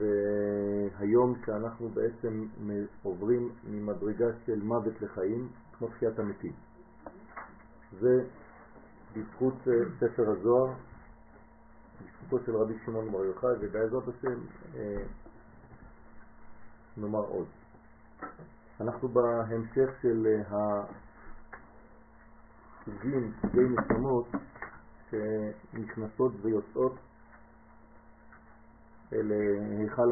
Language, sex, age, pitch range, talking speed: French, male, 50-69, 105-125 Hz, 55 wpm